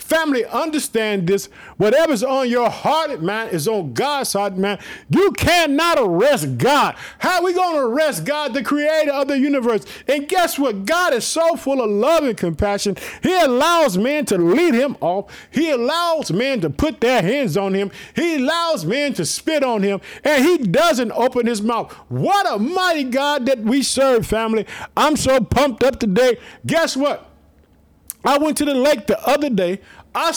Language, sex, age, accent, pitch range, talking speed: English, male, 50-69, American, 220-305 Hz, 185 wpm